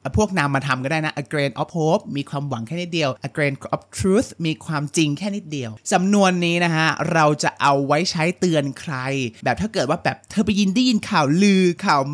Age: 20-39